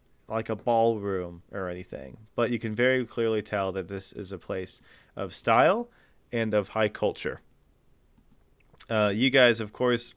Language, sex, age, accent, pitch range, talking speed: English, male, 30-49, American, 95-115 Hz, 160 wpm